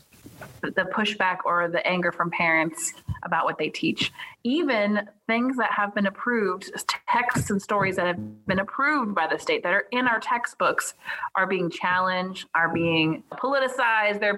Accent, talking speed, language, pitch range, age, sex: American, 165 wpm, English, 175-220 Hz, 30-49, female